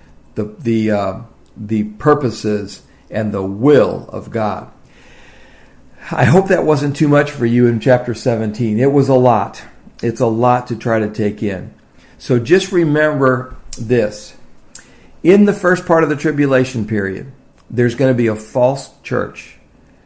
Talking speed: 155 wpm